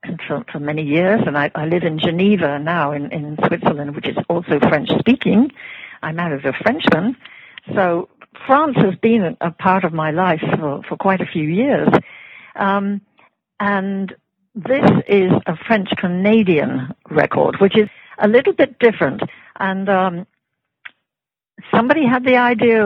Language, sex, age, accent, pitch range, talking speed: English, female, 60-79, British, 170-215 Hz, 150 wpm